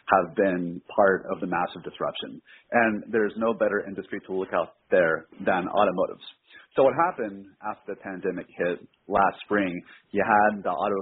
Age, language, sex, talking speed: 30-49, English, male, 170 wpm